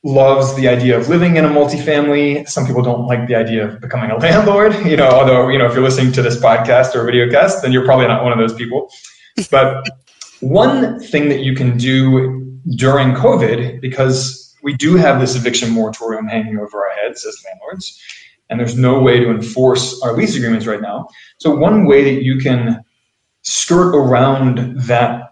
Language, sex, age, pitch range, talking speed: English, male, 20-39, 120-145 Hz, 195 wpm